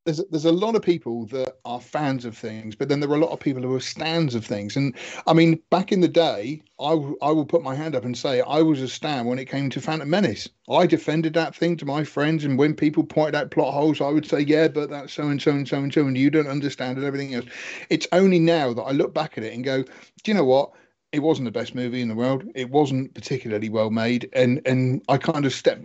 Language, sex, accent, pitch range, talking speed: English, male, British, 125-160 Hz, 265 wpm